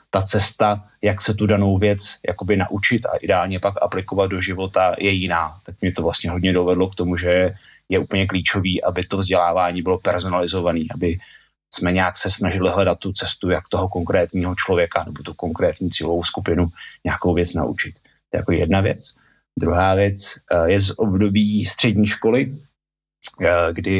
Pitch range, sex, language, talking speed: 90-105 Hz, male, Slovak, 170 wpm